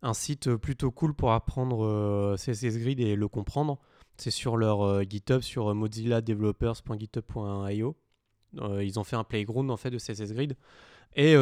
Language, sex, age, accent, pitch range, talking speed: French, male, 20-39, French, 110-130 Hz, 175 wpm